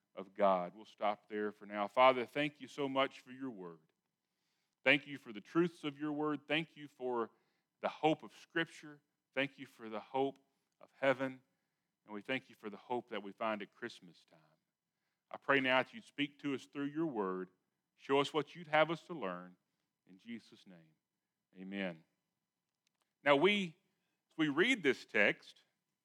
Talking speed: 180 wpm